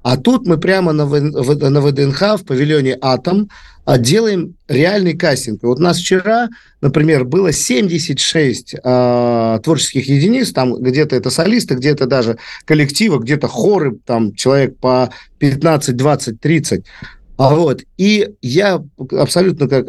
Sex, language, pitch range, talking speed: male, Russian, 135-185 Hz, 125 wpm